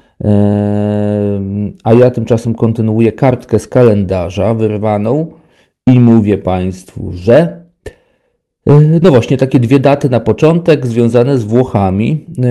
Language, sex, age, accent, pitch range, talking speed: Polish, male, 40-59, native, 105-125 Hz, 105 wpm